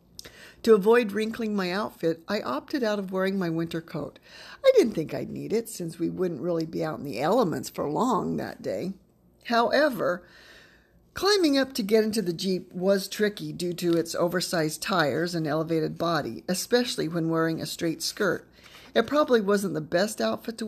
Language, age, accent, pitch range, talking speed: English, 50-69, American, 160-210 Hz, 185 wpm